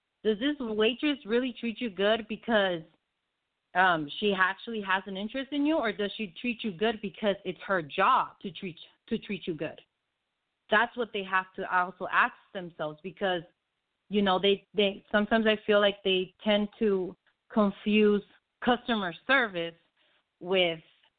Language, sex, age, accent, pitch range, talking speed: English, female, 30-49, American, 185-220 Hz, 160 wpm